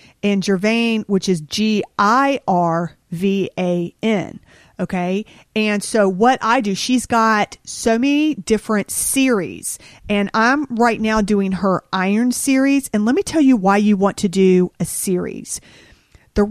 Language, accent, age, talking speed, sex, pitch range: English, American, 40-59, 140 wpm, female, 185-225 Hz